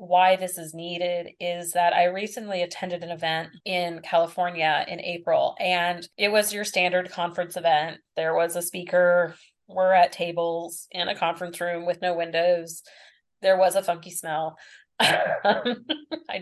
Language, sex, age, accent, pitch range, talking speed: English, female, 30-49, American, 175-235 Hz, 155 wpm